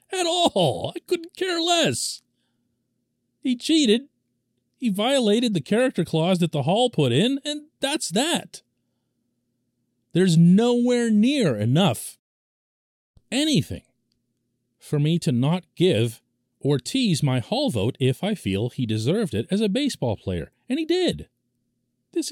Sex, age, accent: male, 40-59, American